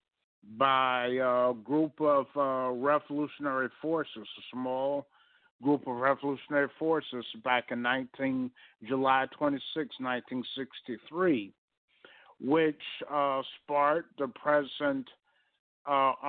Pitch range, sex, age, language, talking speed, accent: 125-145 Hz, male, 60-79, English, 90 wpm, American